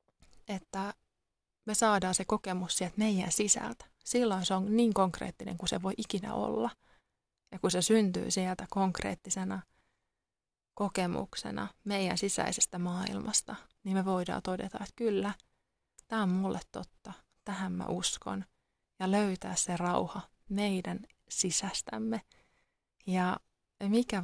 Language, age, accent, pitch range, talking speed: Finnish, 20-39, native, 180-210 Hz, 120 wpm